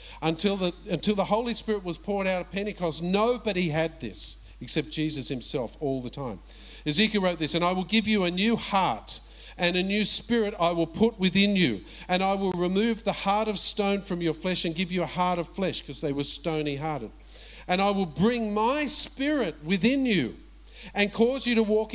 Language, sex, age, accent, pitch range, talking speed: English, male, 50-69, Australian, 170-220 Hz, 210 wpm